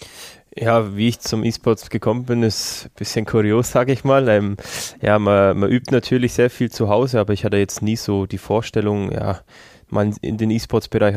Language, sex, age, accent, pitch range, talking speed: German, male, 20-39, German, 100-115 Hz, 200 wpm